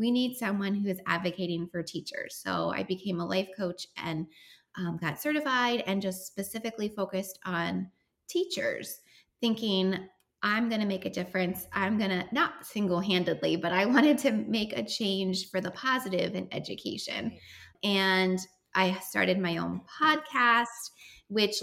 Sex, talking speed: female, 155 wpm